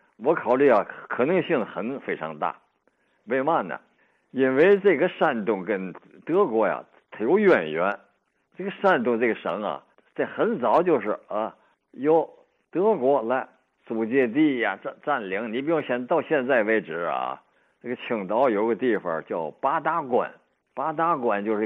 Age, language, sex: 60-79, Chinese, male